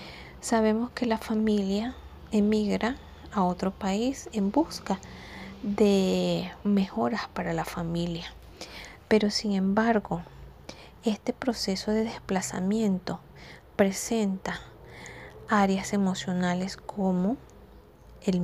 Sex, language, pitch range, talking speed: female, Spanish, 180-220 Hz, 90 wpm